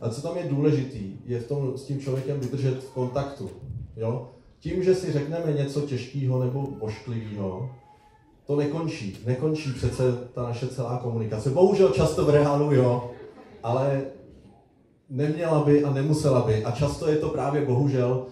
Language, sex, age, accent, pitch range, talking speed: Czech, male, 30-49, native, 115-140 Hz, 155 wpm